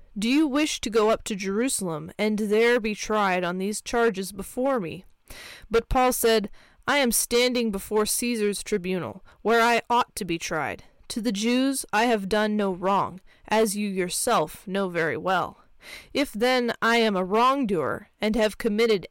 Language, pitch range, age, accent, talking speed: English, 195-240 Hz, 20-39, American, 175 wpm